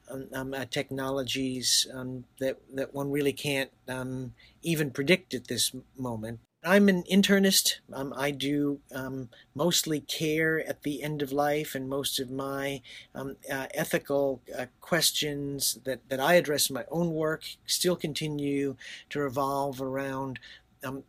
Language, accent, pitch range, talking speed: English, American, 130-145 Hz, 150 wpm